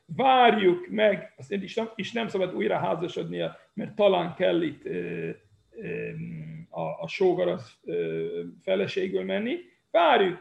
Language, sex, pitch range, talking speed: Hungarian, male, 170-230 Hz, 115 wpm